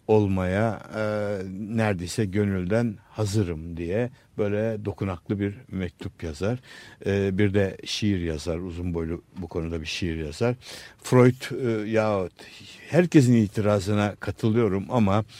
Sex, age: male, 60-79